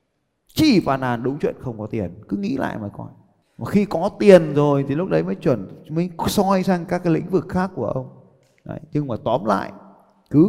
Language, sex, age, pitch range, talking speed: Vietnamese, male, 20-39, 105-145 Hz, 225 wpm